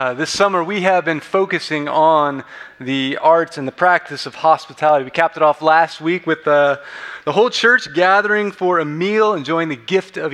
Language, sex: English, male